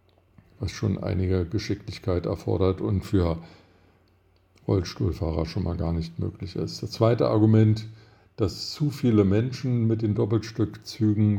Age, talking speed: 50-69, 125 wpm